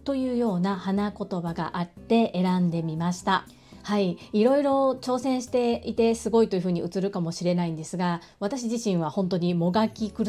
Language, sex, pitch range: Japanese, female, 185-230 Hz